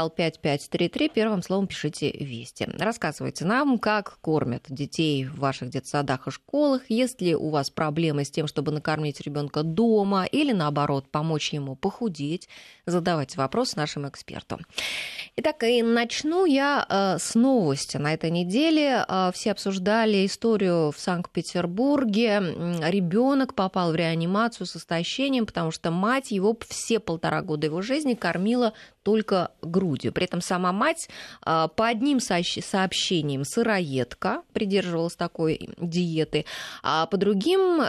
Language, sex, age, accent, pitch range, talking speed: Russian, female, 20-39, native, 160-225 Hz, 130 wpm